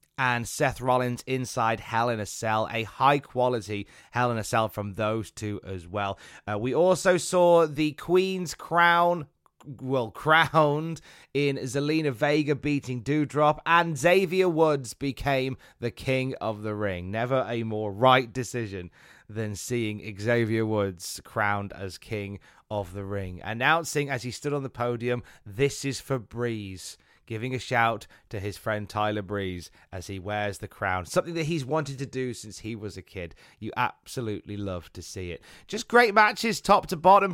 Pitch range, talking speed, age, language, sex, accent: 110-155 Hz, 170 wpm, 20-39, English, male, British